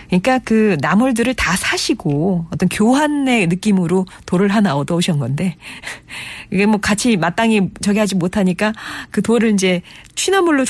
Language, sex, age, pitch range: Korean, female, 40-59, 165-235 Hz